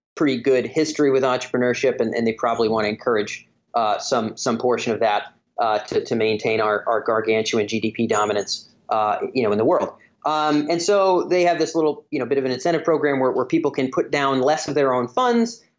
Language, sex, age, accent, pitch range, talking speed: English, male, 30-49, American, 125-160 Hz, 220 wpm